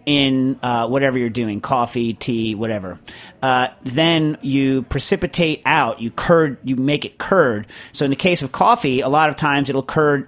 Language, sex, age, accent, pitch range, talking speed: English, male, 40-59, American, 120-145 Hz, 185 wpm